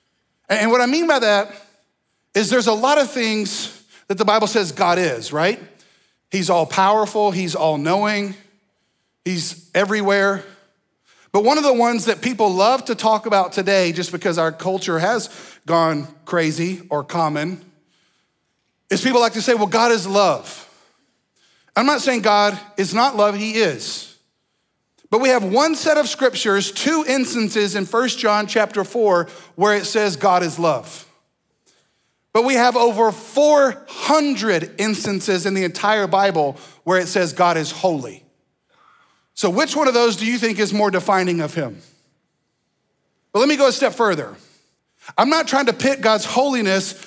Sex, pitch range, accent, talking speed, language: male, 180-230 Hz, American, 160 wpm, English